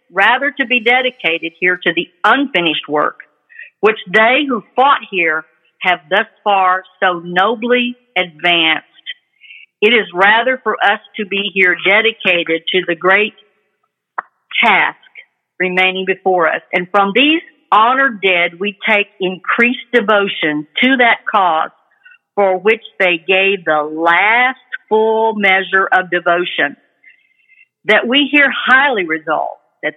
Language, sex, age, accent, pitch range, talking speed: English, female, 50-69, American, 175-240 Hz, 130 wpm